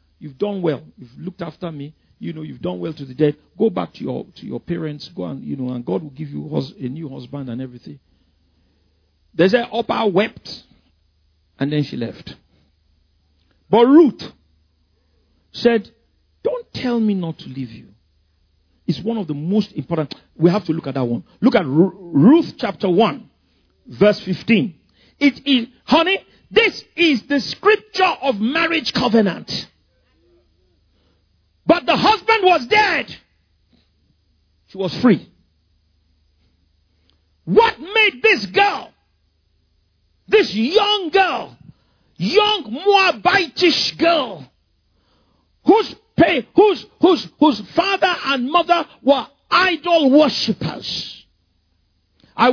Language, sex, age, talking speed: English, male, 50-69, 130 wpm